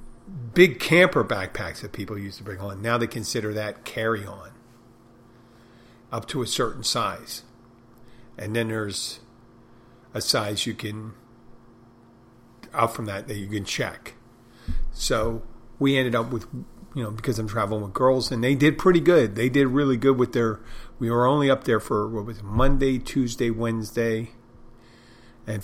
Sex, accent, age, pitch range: male, American, 50-69, 110-120 Hz